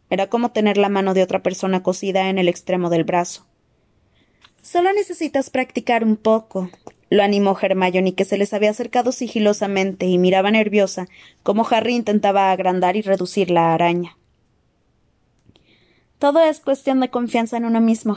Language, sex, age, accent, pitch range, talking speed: Spanish, female, 20-39, Mexican, 185-220 Hz, 155 wpm